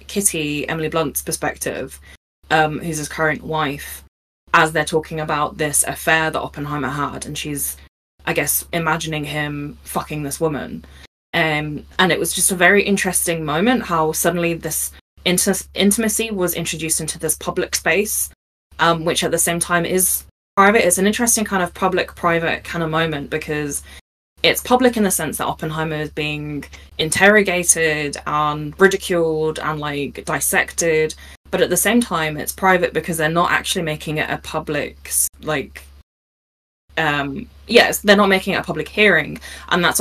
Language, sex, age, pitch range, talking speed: English, female, 20-39, 150-170 Hz, 160 wpm